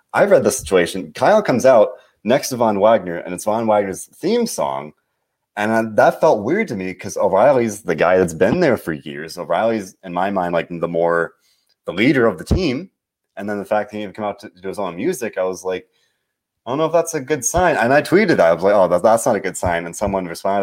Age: 30-49